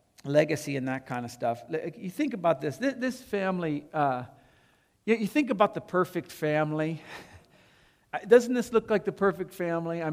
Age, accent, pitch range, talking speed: 50-69, American, 140-185 Hz, 160 wpm